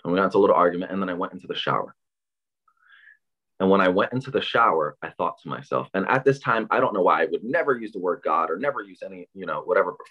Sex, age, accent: male, 20-39, American